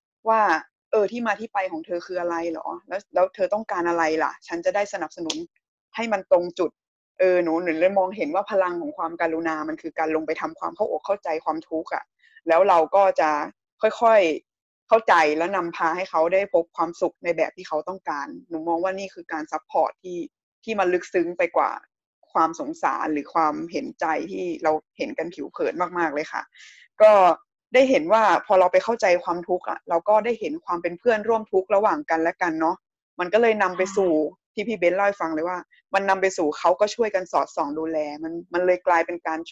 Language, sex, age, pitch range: Thai, female, 20-39, 165-210 Hz